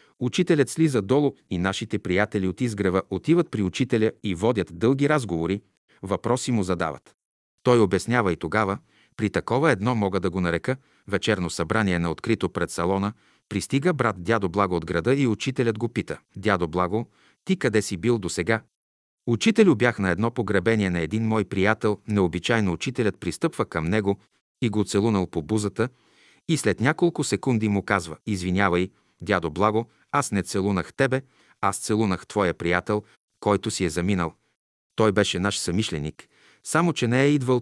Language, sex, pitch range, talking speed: Bulgarian, male, 95-125 Hz, 165 wpm